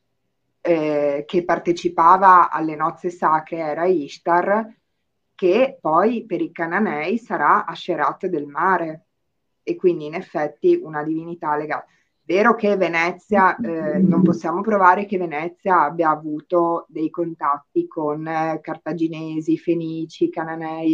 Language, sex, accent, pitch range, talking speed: Italian, female, native, 155-185 Hz, 120 wpm